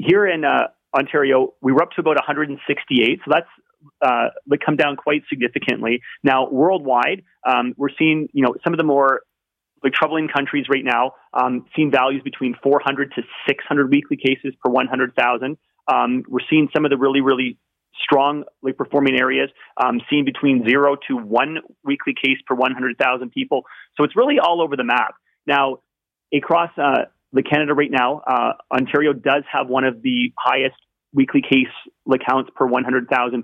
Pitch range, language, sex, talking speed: 130-145 Hz, English, male, 165 wpm